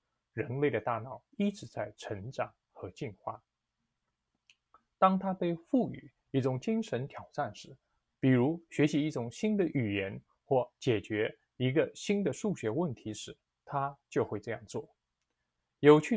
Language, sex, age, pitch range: Chinese, male, 20-39, 115-170 Hz